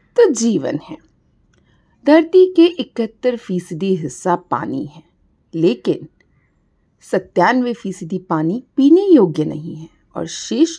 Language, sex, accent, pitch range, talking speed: Hindi, female, native, 160-260 Hz, 100 wpm